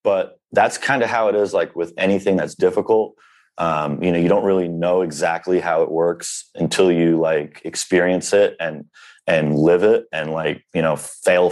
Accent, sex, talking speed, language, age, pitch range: American, male, 195 wpm, English, 30-49, 85-105 Hz